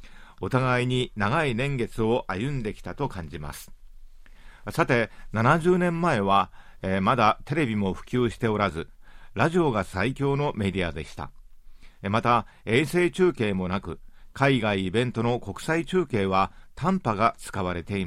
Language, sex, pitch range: Japanese, male, 95-135 Hz